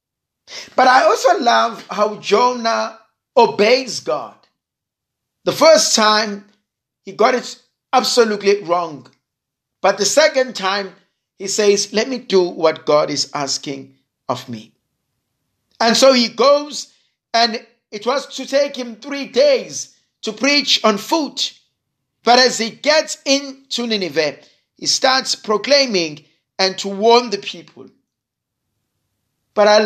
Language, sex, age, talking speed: English, male, 50-69, 125 wpm